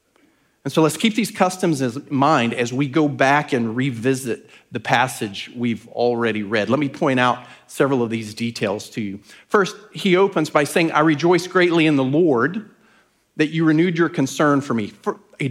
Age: 40-59